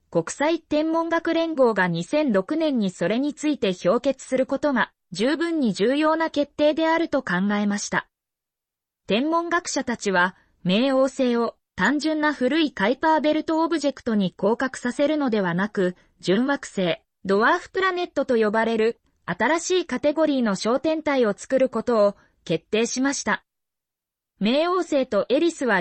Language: Japanese